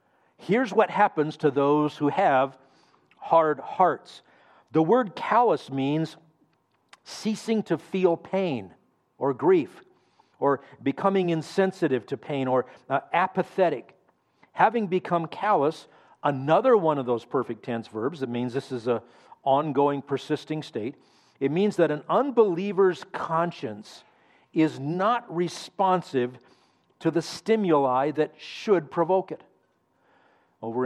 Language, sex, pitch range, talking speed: English, male, 135-175 Hz, 120 wpm